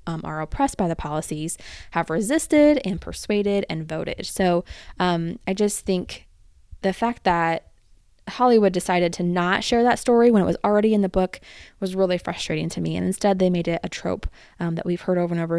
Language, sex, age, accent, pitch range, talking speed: English, female, 20-39, American, 175-220 Hz, 205 wpm